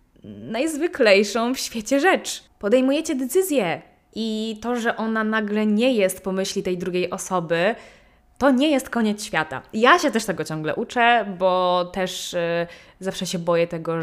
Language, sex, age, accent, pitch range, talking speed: Polish, female, 20-39, native, 170-220 Hz, 155 wpm